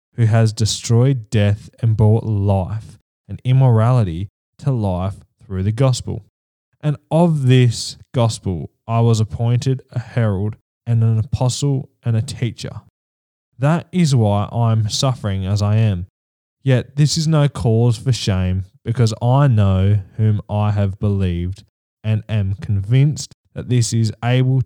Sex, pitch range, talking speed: male, 100-130 Hz, 145 wpm